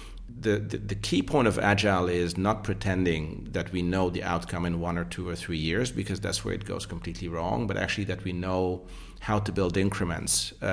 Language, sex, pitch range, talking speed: English, male, 85-100 Hz, 215 wpm